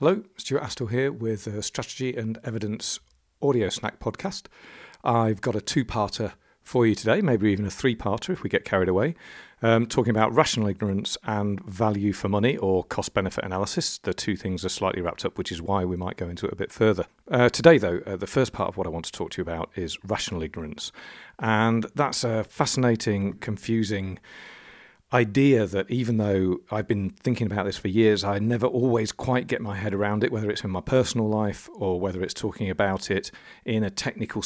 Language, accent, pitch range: English, British, 100-120 Hz